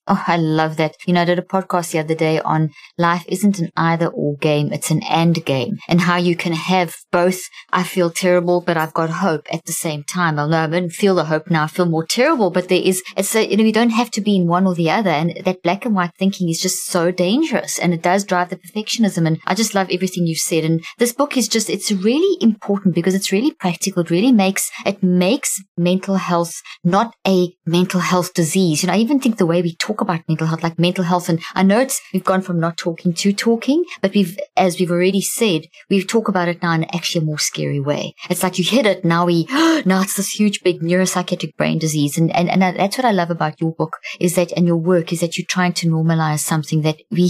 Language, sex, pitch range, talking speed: English, female, 165-195 Hz, 255 wpm